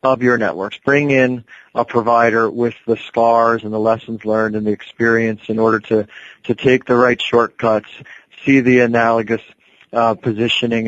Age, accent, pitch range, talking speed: 40-59, American, 115-125 Hz, 165 wpm